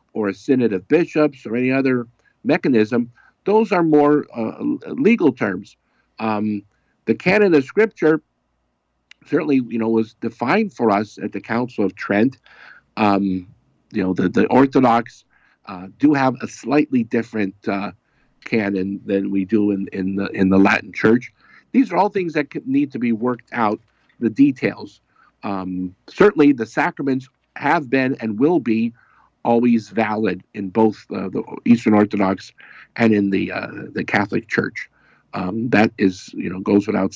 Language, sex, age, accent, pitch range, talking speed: English, male, 50-69, American, 105-145 Hz, 155 wpm